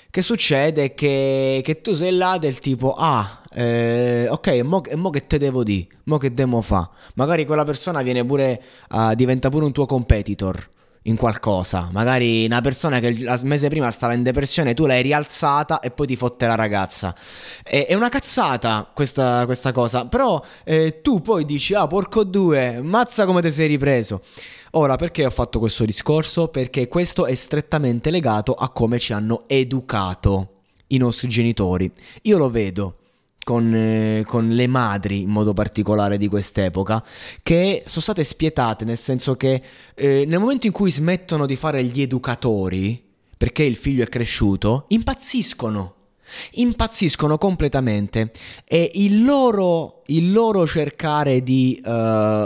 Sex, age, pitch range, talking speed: male, 20-39, 115-155 Hz, 160 wpm